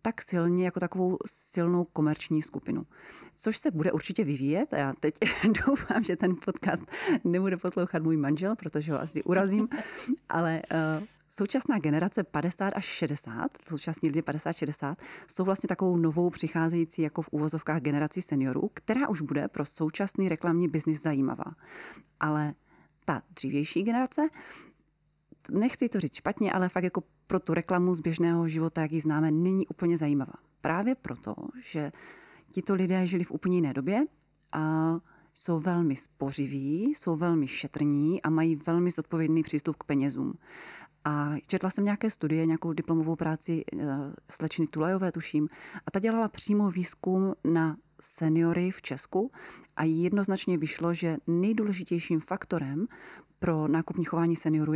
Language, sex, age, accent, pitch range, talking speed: Czech, female, 30-49, native, 155-190 Hz, 145 wpm